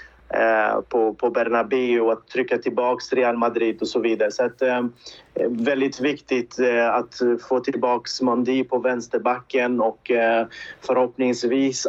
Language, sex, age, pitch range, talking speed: Swedish, male, 30-49, 120-140 Hz, 115 wpm